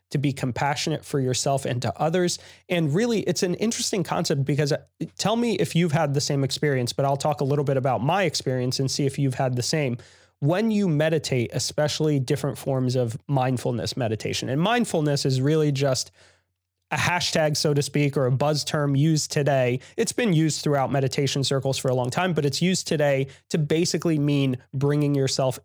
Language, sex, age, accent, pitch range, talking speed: English, male, 30-49, American, 130-160 Hz, 195 wpm